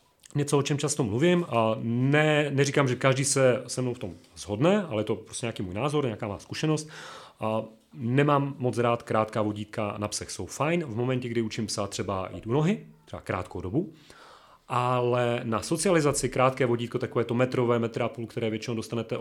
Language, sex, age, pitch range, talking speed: Czech, male, 30-49, 110-140 Hz, 185 wpm